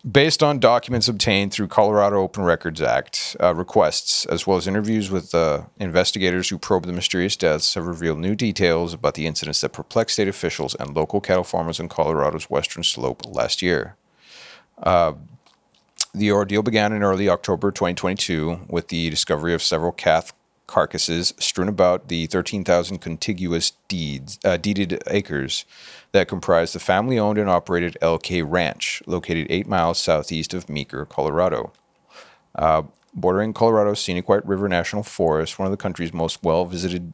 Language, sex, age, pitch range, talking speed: English, male, 40-59, 85-100 Hz, 160 wpm